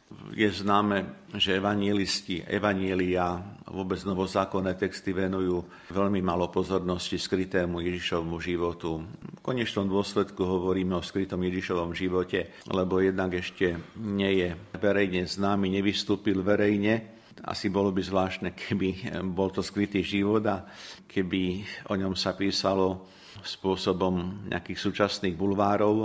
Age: 50-69